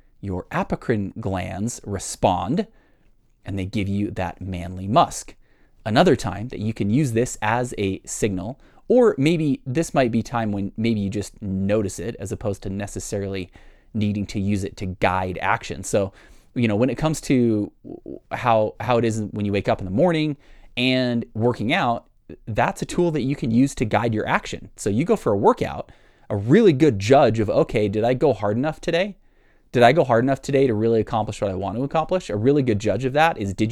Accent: American